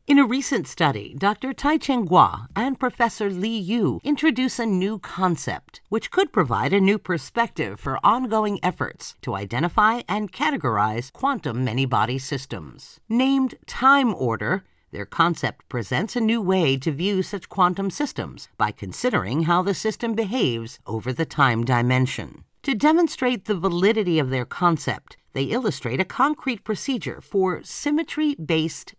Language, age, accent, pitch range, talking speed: English, 50-69, American, 150-245 Hz, 145 wpm